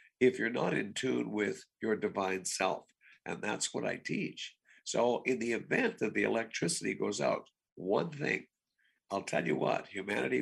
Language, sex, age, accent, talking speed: English, male, 60-79, American, 175 wpm